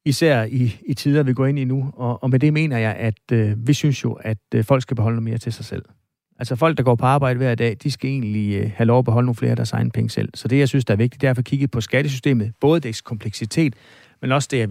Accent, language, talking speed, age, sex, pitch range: native, Danish, 300 wpm, 40-59, male, 115-135 Hz